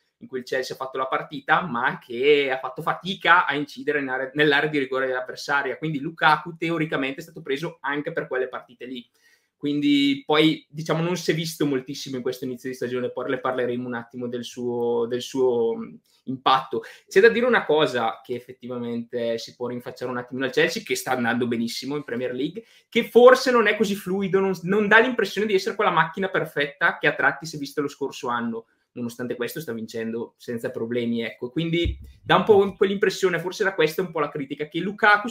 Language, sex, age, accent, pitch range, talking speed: Italian, male, 20-39, native, 125-175 Hz, 205 wpm